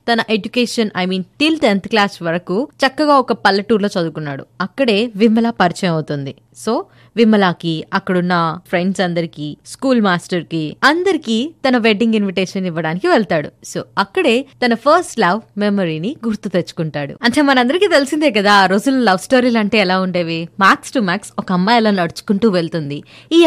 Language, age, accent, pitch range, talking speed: Telugu, 20-39, native, 185-260 Hz, 150 wpm